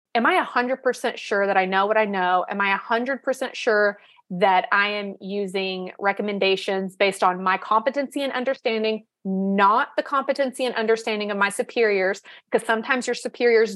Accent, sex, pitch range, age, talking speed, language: American, female, 195-275 Hz, 30-49, 180 wpm, English